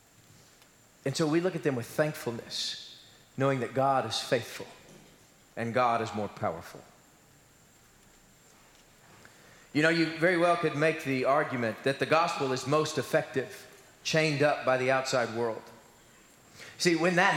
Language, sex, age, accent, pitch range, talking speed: English, male, 40-59, American, 150-185 Hz, 145 wpm